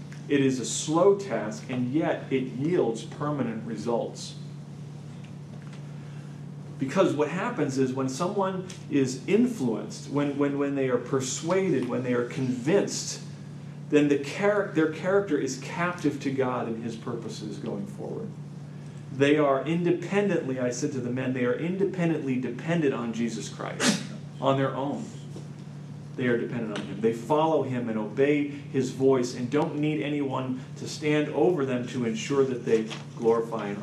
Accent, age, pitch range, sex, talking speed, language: American, 40-59, 130-155 Hz, male, 155 wpm, English